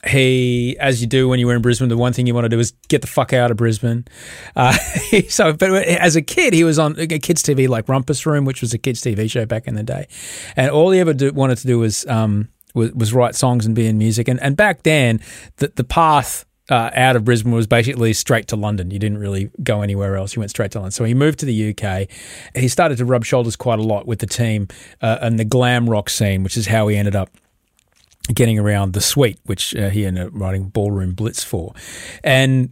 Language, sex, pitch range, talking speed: English, male, 110-140 Hz, 250 wpm